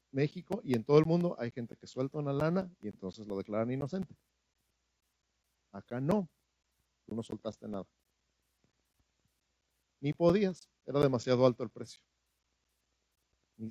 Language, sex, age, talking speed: Spanish, male, 50-69, 135 wpm